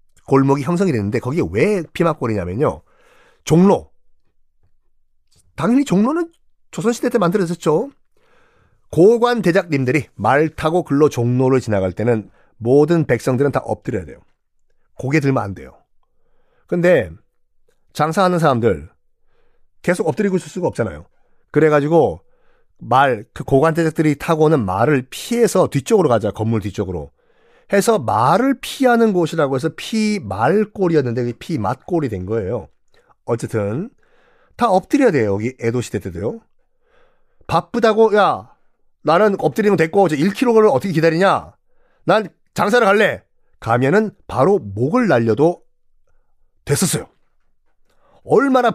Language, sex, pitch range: Korean, male, 120-200 Hz